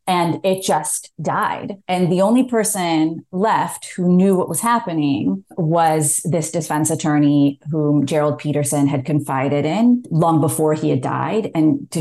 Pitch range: 150-185 Hz